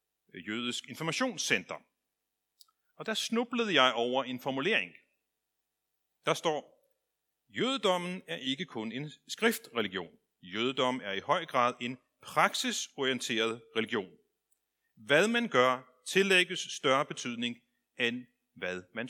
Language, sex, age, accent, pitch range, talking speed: Danish, male, 40-59, native, 115-170 Hz, 105 wpm